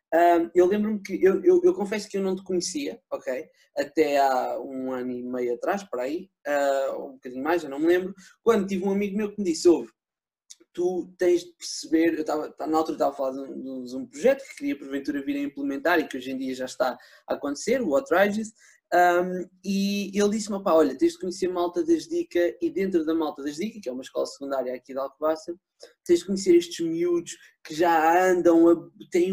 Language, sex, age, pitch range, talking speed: English, male, 20-39, 170-250 Hz, 230 wpm